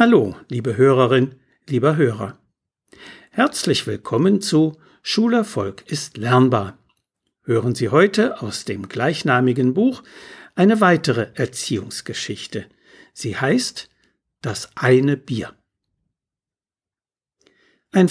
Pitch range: 125-180 Hz